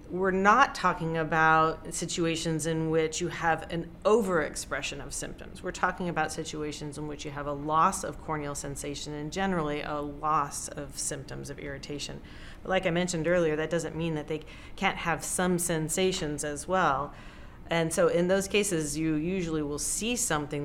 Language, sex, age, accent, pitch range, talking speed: English, female, 40-59, American, 150-175 Hz, 175 wpm